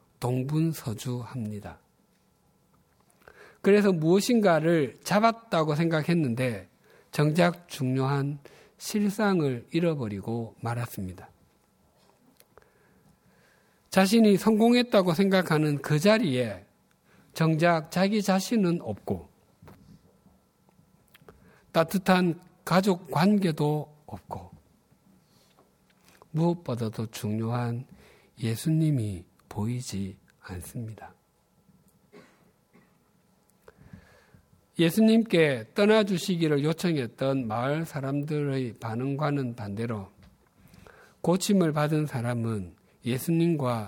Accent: native